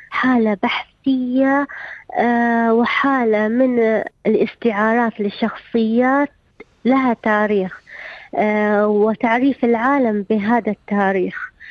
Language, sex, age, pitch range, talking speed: Arabic, female, 20-39, 215-255 Hz, 70 wpm